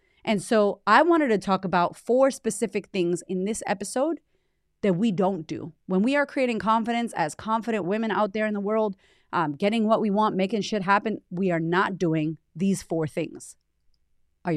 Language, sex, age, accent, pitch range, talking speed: English, female, 30-49, American, 190-260 Hz, 190 wpm